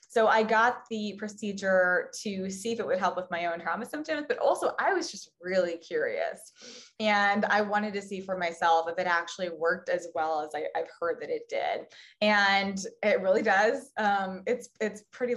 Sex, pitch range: female, 180-225 Hz